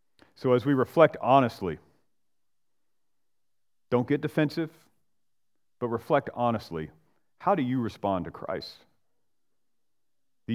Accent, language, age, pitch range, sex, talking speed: American, English, 40-59, 105-130 Hz, male, 100 wpm